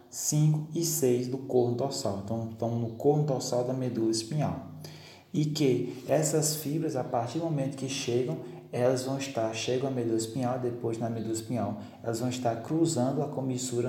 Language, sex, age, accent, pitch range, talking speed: Portuguese, male, 20-39, Brazilian, 115-140 Hz, 175 wpm